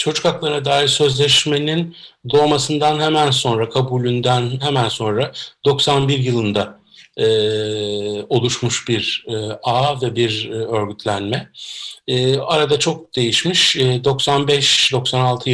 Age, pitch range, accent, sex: 50-69, 120-145 Hz, native, male